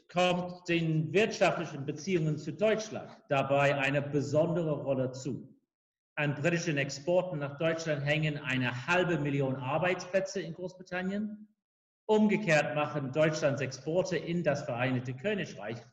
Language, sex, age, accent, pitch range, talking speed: English, male, 50-69, German, 130-175 Hz, 115 wpm